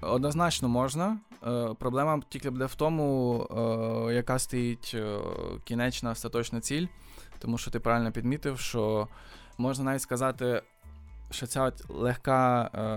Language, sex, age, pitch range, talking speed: Ukrainian, male, 20-39, 110-135 Hz, 110 wpm